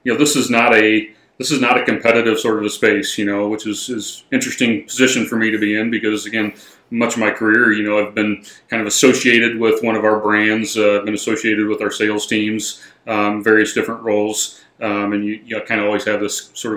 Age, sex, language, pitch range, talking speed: 30-49, male, English, 105-110 Hz, 240 wpm